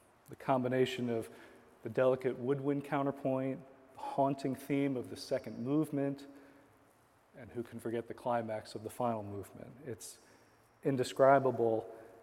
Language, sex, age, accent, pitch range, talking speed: English, male, 40-59, American, 115-140 Hz, 130 wpm